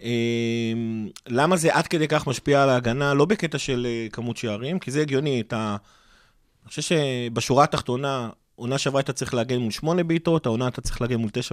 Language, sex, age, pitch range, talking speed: Hebrew, male, 30-49, 120-165 Hz, 195 wpm